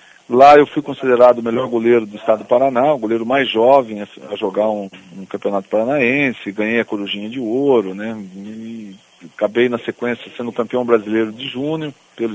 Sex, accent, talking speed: male, Brazilian, 175 wpm